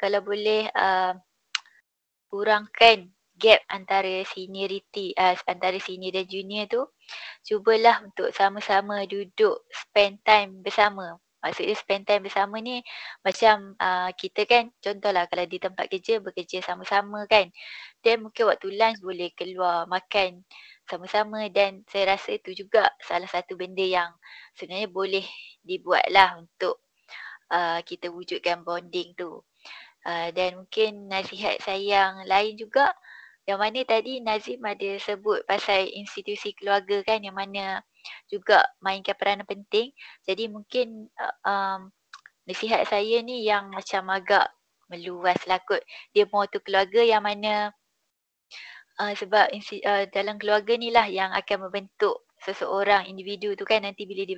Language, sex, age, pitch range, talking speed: Malay, female, 20-39, 190-220 Hz, 135 wpm